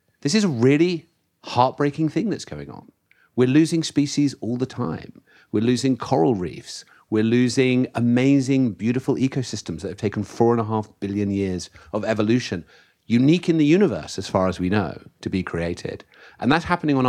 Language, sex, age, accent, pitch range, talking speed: English, male, 40-59, British, 95-130 Hz, 180 wpm